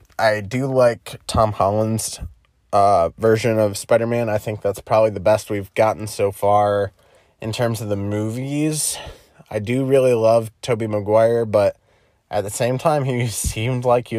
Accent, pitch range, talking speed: American, 100-120 Hz, 165 wpm